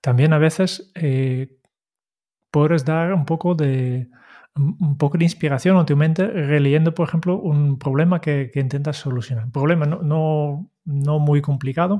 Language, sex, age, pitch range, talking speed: Spanish, male, 30-49, 140-175 Hz, 160 wpm